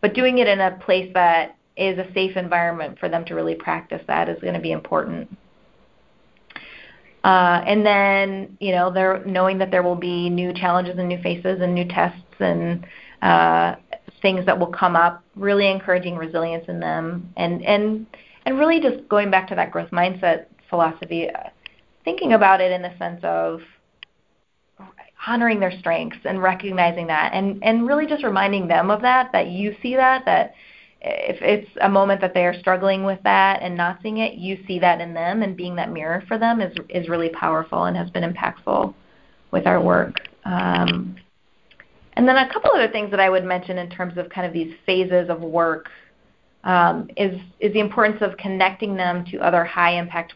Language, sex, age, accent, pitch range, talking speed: English, female, 30-49, American, 170-200 Hz, 185 wpm